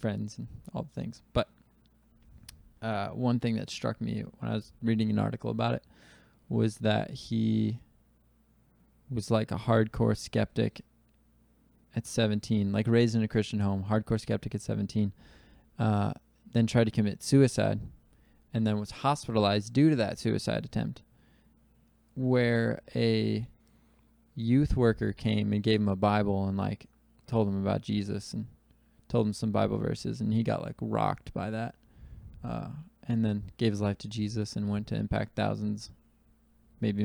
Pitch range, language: 105-115 Hz, English